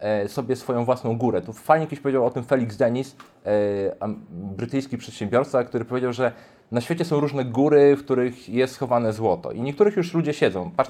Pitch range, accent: 110-135 Hz, native